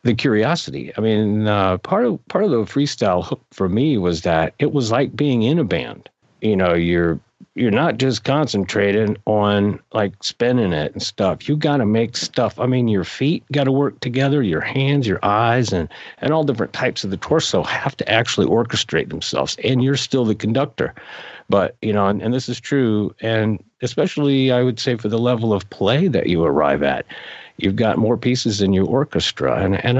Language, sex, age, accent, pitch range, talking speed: English, male, 50-69, American, 95-125 Hz, 200 wpm